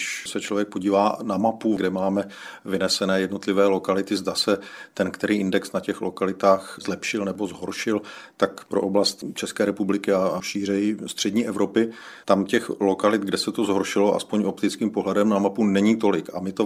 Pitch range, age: 95-105 Hz, 40-59